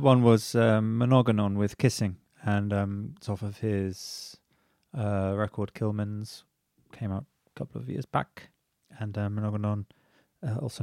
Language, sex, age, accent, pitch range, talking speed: English, male, 20-39, British, 100-115 Hz, 145 wpm